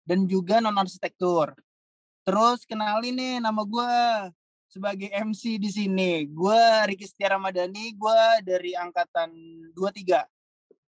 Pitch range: 185-230 Hz